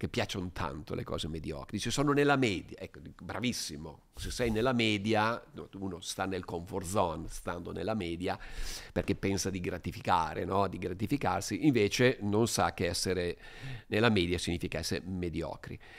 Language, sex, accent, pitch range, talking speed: Italian, male, native, 95-130 Hz, 155 wpm